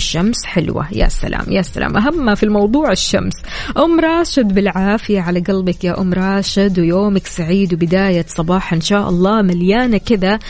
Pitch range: 185-240 Hz